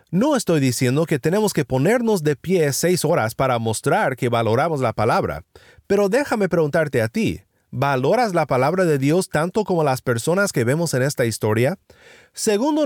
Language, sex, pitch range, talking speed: Spanish, male, 135-200 Hz, 175 wpm